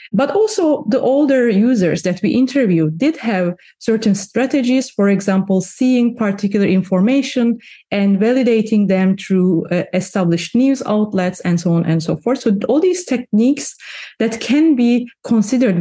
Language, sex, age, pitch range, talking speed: English, female, 30-49, 185-250 Hz, 150 wpm